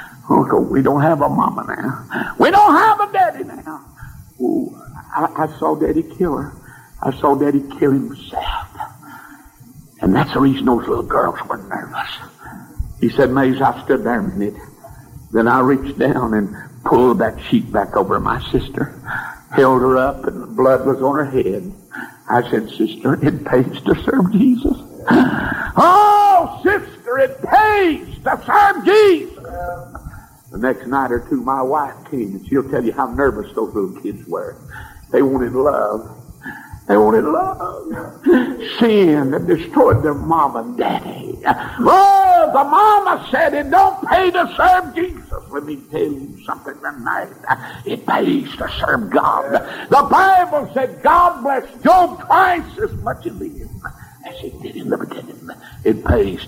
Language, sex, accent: English, male, American